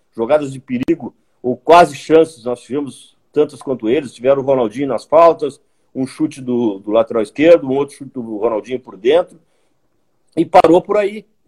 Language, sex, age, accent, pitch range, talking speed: Portuguese, male, 50-69, Brazilian, 130-175 Hz, 180 wpm